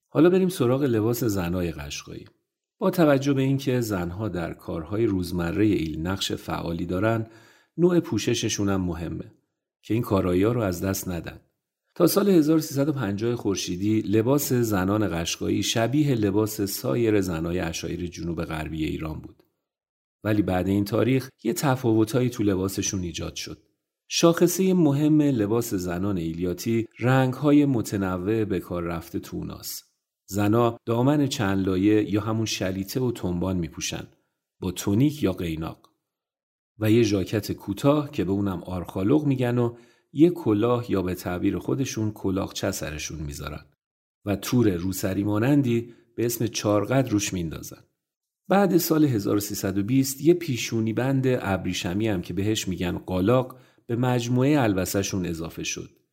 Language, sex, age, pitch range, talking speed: Persian, male, 40-59, 95-125 Hz, 130 wpm